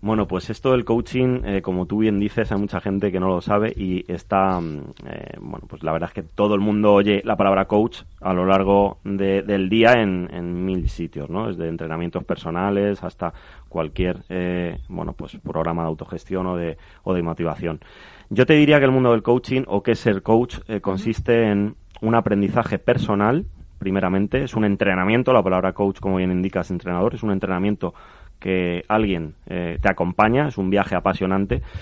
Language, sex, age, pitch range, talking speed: Spanish, male, 30-49, 90-105 Hz, 190 wpm